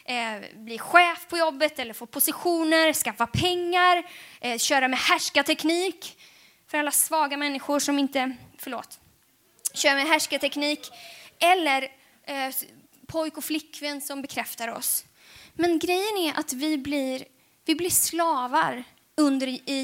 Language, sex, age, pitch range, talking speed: Swedish, female, 20-39, 250-315 Hz, 130 wpm